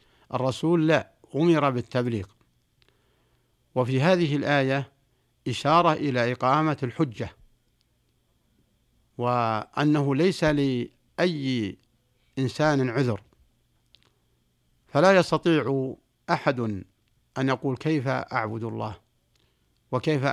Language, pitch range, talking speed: Arabic, 115-150 Hz, 75 wpm